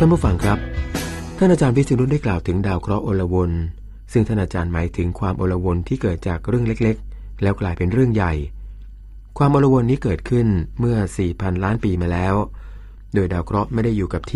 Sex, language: male, Thai